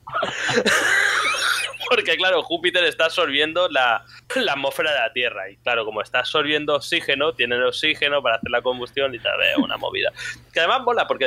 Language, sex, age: English, male, 20-39